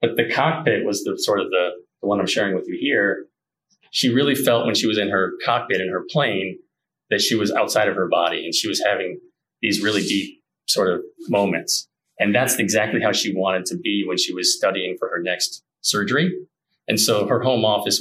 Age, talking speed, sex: 30-49, 215 wpm, male